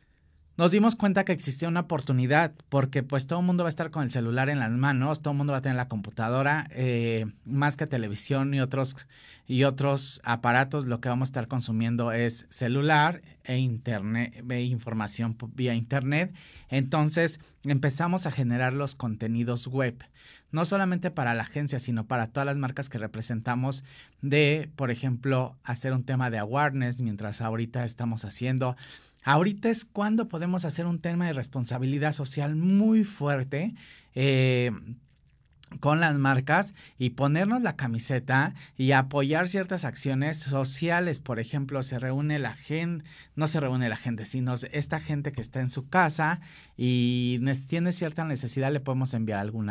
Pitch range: 120-155 Hz